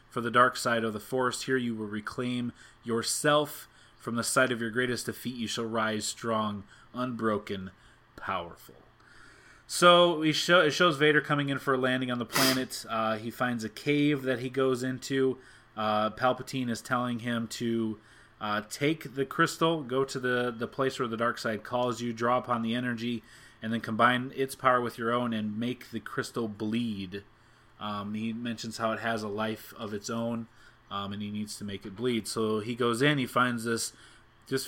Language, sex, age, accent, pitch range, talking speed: English, male, 30-49, American, 110-135 Hz, 190 wpm